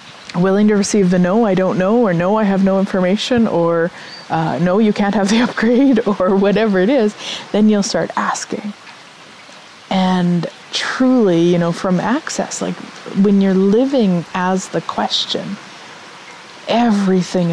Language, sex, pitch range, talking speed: English, female, 180-215 Hz, 150 wpm